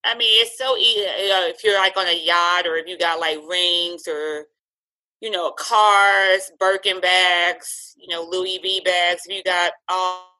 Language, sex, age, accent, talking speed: English, female, 20-39, American, 195 wpm